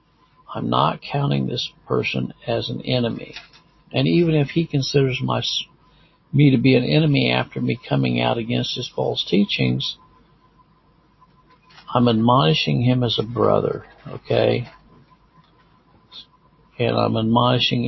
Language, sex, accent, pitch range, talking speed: English, male, American, 115-145 Hz, 125 wpm